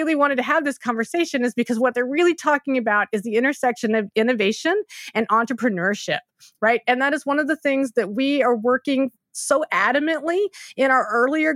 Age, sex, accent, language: 30-49, female, American, English